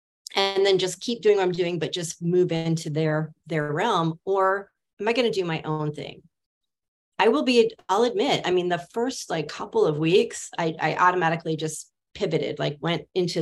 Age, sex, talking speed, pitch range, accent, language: 30-49, female, 195 wpm, 165-235 Hz, American, English